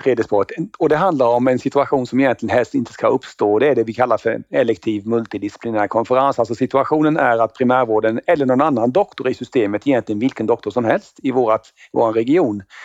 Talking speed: 185 wpm